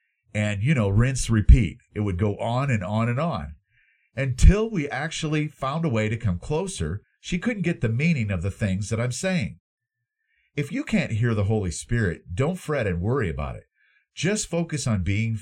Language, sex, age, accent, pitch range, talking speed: English, male, 50-69, American, 95-145 Hz, 195 wpm